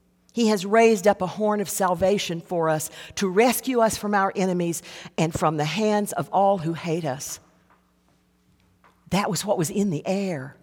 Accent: American